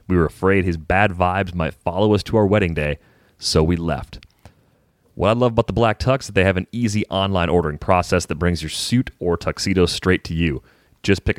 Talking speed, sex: 225 wpm, male